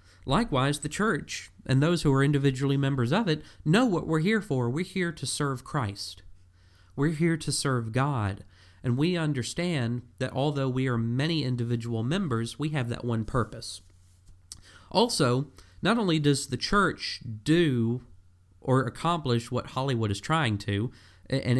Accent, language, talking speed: American, English, 155 wpm